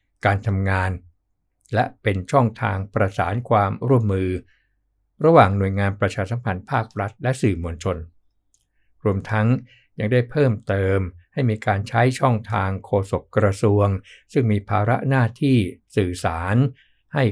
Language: Thai